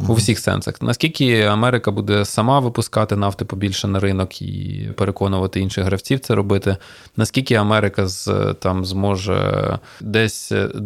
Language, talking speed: Ukrainian, 125 wpm